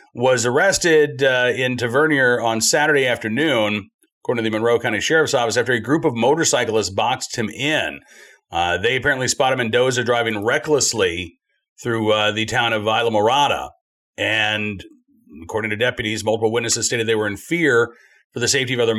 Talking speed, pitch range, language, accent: 170 wpm, 105-130 Hz, English, American